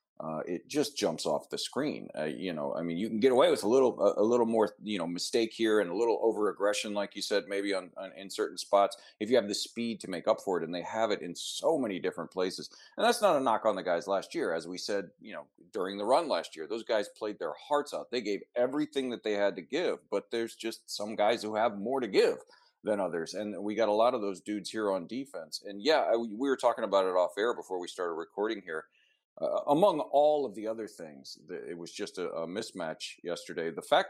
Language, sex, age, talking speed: English, male, 40-59, 260 wpm